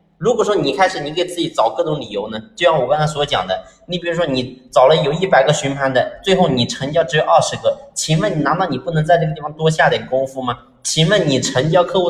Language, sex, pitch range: Chinese, male, 125-175 Hz